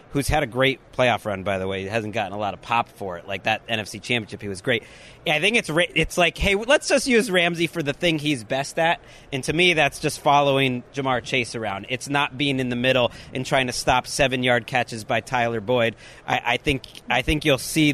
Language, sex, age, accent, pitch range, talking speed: English, male, 30-49, American, 125-160 Hz, 245 wpm